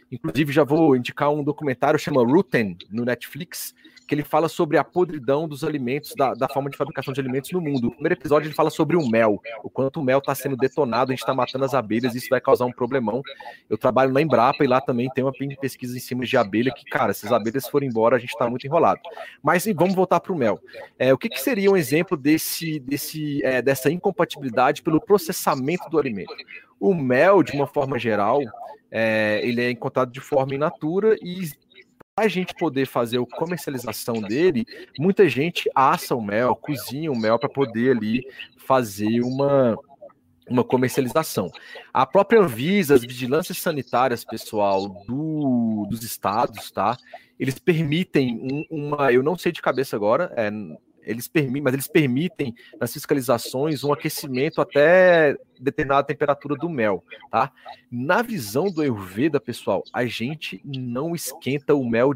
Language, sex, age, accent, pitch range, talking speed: Portuguese, male, 30-49, Brazilian, 125-155 Hz, 175 wpm